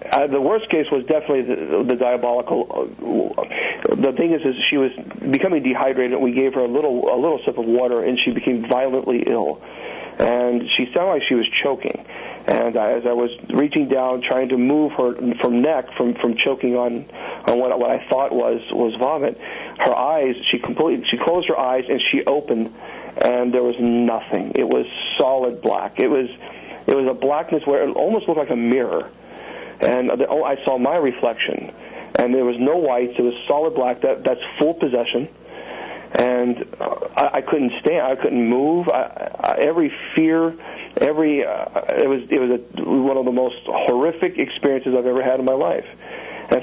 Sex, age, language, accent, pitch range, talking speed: male, 50-69, English, American, 120-135 Hz, 190 wpm